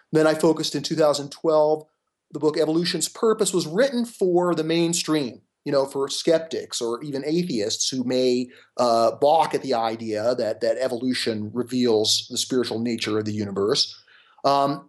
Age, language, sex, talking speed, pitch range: 40-59, English, male, 155 wpm, 130-180 Hz